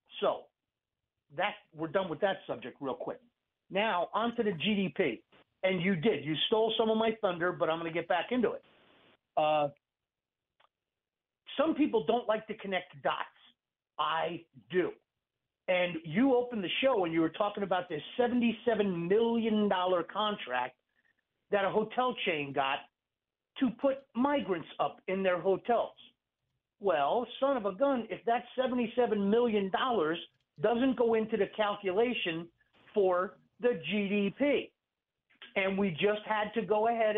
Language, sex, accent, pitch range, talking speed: English, male, American, 180-240 Hz, 145 wpm